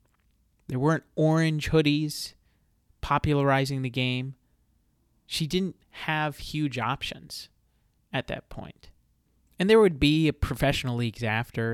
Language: English